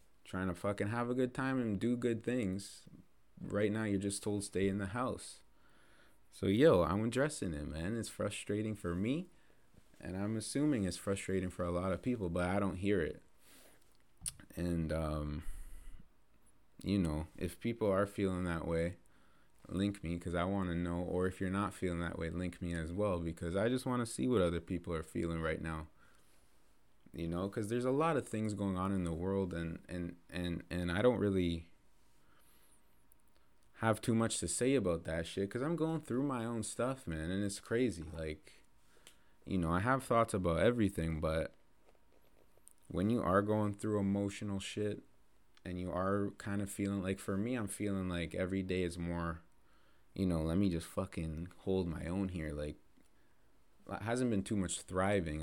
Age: 30-49